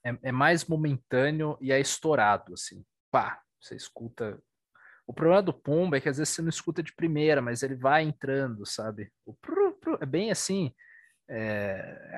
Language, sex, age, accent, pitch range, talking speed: Portuguese, male, 20-39, Brazilian, 110-150 Hz, 175 wpm